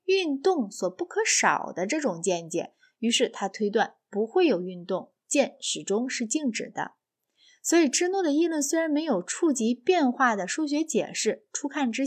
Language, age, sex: Chinese, 20-39, female